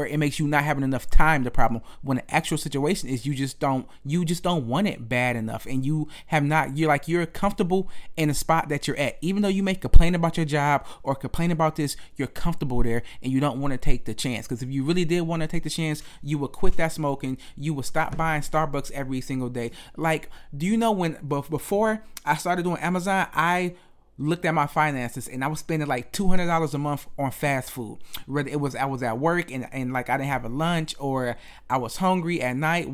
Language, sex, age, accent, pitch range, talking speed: English, male, 30-49, American, 135-165 Hz, 240 wpm